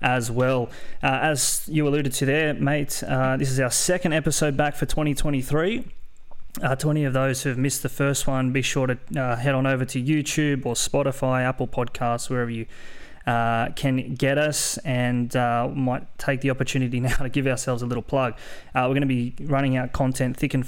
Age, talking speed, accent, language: 20-39, 205 wpm, Australian, English